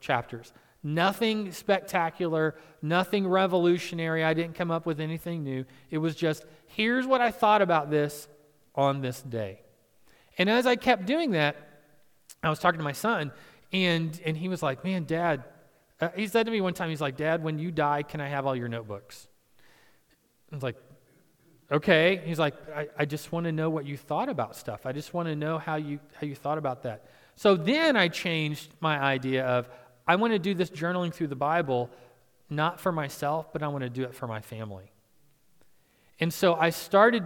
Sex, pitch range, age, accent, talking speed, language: male, 145-180 Hz, 40-59, American, 195 wpm, English